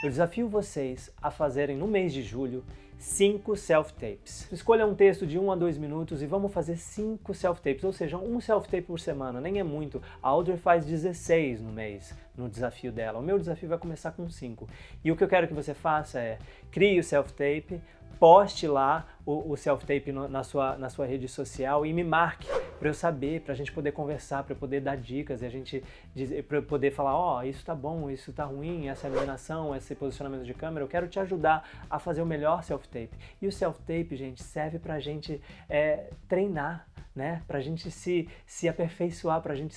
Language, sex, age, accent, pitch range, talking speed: Portuguese, male, 20-39, Brazilian, 135-175 Hz, 200 wpm